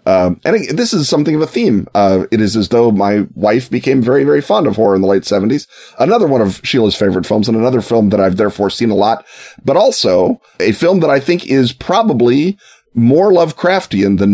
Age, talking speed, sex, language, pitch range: 30-49, 220 wpm, male, English, 100-135 Hz